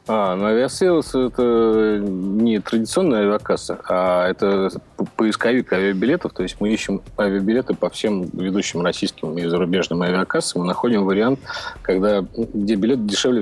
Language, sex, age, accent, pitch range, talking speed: Russian, male, 30-49, native, 95-110 Hz, 130 wpm